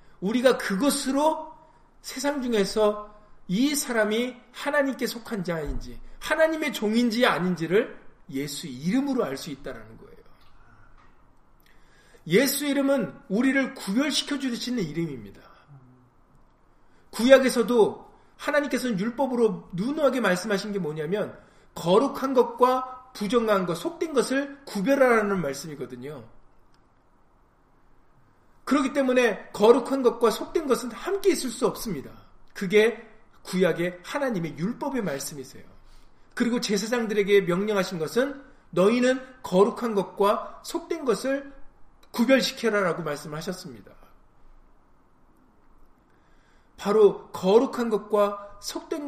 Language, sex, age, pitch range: Korean, male, 40-59, 175-255 Hz